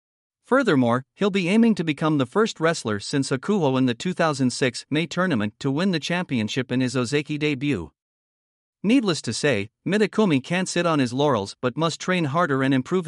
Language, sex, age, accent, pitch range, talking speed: English, male, 50-69, American, 130-170 Hz, 180 wpm